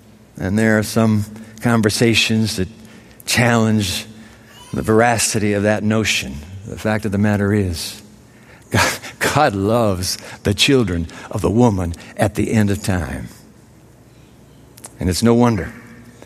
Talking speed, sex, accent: 130 wpm, male, American